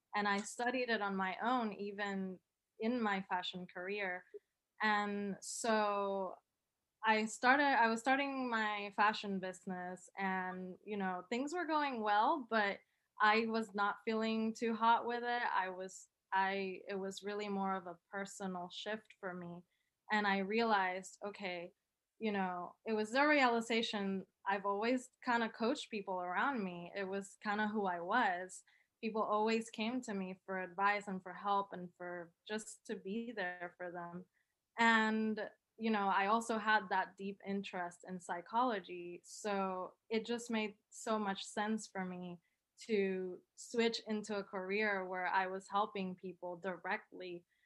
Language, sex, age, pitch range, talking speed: English, female, 20-39, 185-220 Hz, 155 wpm